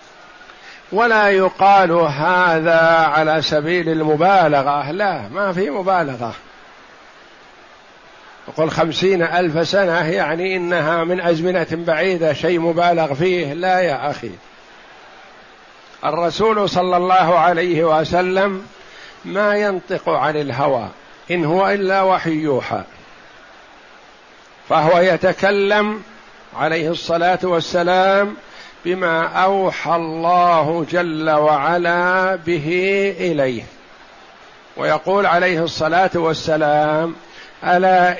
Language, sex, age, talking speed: Arabic, male, 60-79, 90 wpm